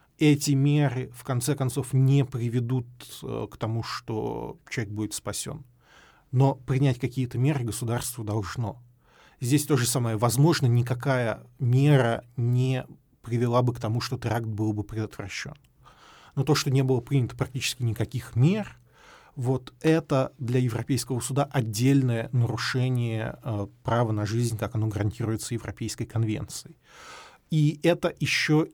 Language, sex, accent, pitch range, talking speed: Russian, male, native, 115-135 Hz, 135 wpm